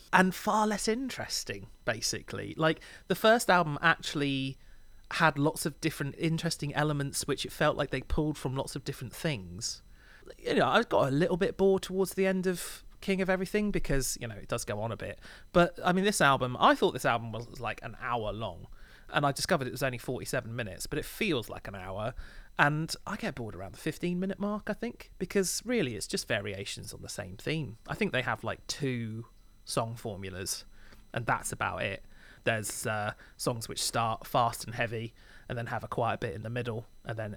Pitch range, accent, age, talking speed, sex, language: 115-160 Hz, British, 30-49, 210 wpm, male, English